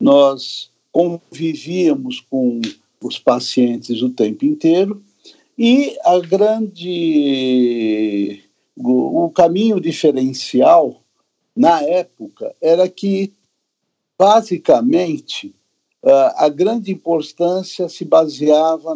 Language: Portuguese